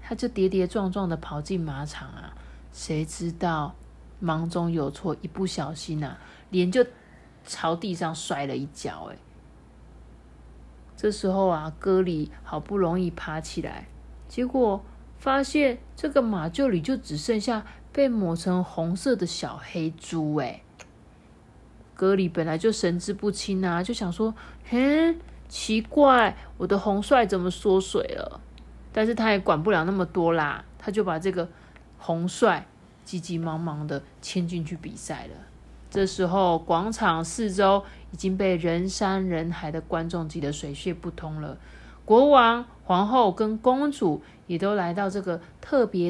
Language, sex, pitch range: Chinese, female, 160-205 Hz